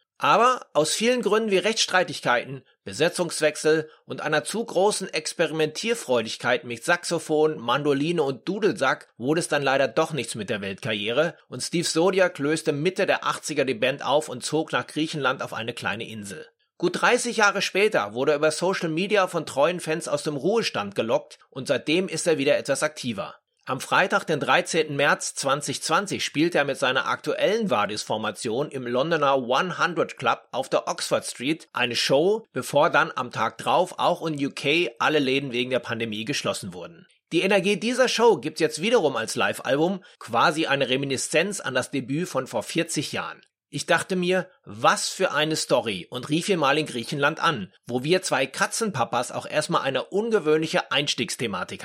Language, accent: German, German